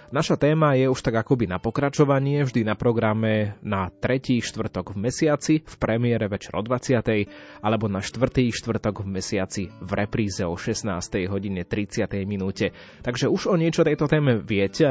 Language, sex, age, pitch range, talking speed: Slovak, male, 20-39, 105-130 Hz, 155 wpm